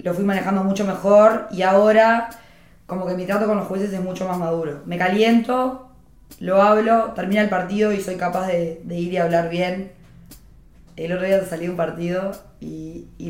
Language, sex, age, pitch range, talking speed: Spanish, female, 20-39, 170-200 Hz, 195 wpm